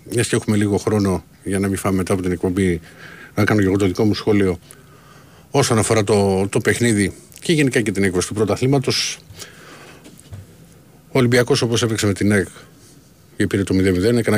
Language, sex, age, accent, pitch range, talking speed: Greek, male, 50-69, native, 95-115 Hz, 190 wpm